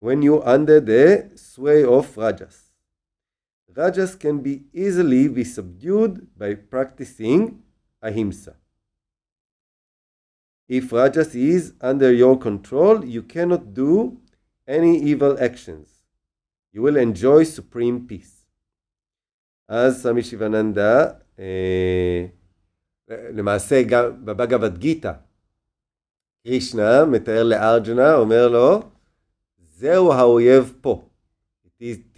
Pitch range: 95-130 Hz